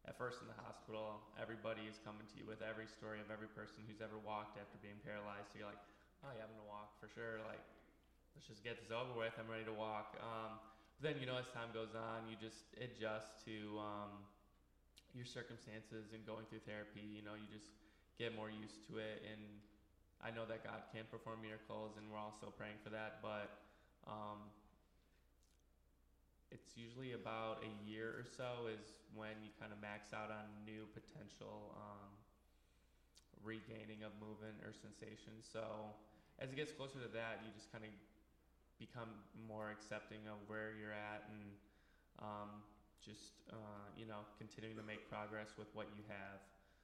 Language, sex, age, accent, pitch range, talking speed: English, male, 20-39, American, 105-110 Hz, 185 wpm